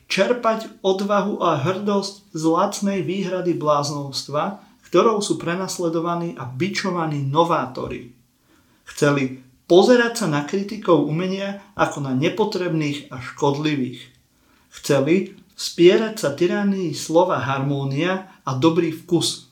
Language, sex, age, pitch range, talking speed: Slovak, male, 40-59, 140-190 Hz, 105 wpm